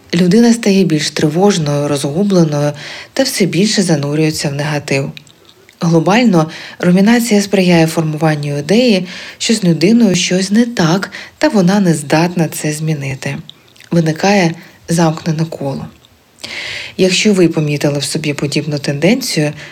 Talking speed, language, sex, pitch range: 115 wpm, Ukrainian, female, 155-205 Hz